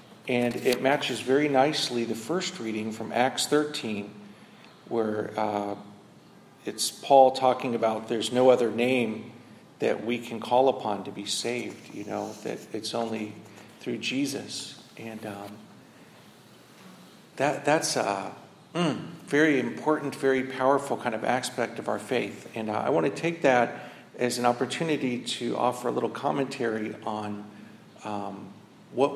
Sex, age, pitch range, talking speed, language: male, 50-69, 110-135 Hz, 145 wpm, English